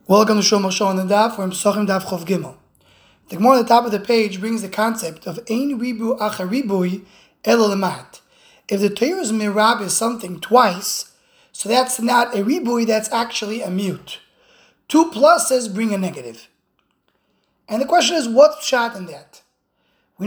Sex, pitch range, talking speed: male, 200-255 Hz, 170 wpm